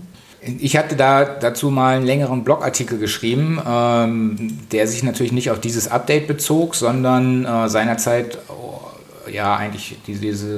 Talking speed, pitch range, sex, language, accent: 145 wpm, 110-135 Hz, male, German, German